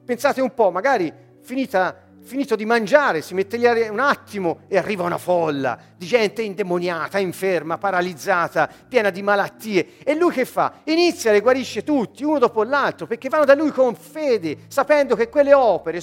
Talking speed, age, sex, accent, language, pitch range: 175 wpm, 40-59, male, native, Italian, 185-285 Hz